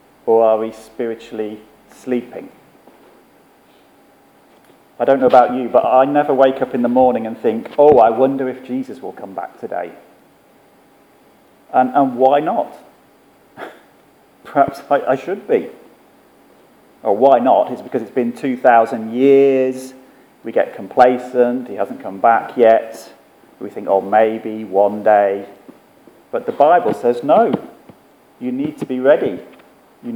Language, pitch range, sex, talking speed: English, 115-140 Hz, male, 145 wpm